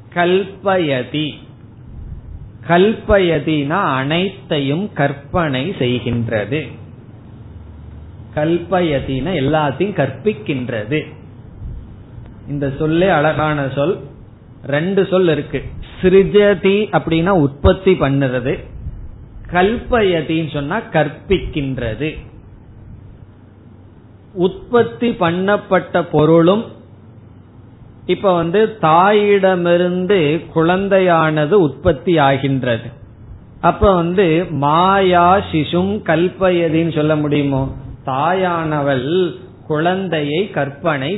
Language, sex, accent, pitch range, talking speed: Tamil, male, native, 125-180 Hz, 60 wpm